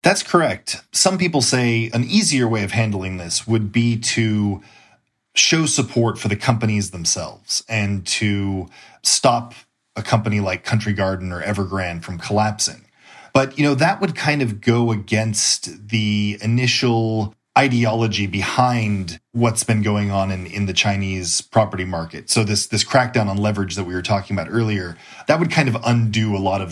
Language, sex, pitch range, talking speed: English, male, 95-115 Hz, 170 wpm